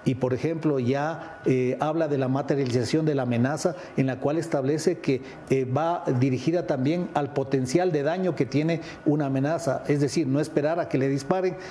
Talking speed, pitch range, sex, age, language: 190 wpm, 135-165 Hz, male, 50-69, English